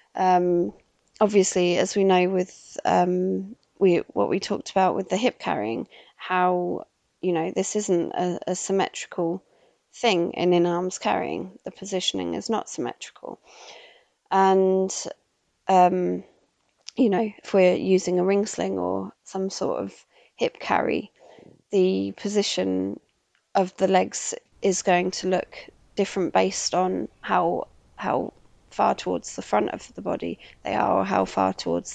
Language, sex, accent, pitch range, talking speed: English, female, British, 175-195 Hz, 145 wpm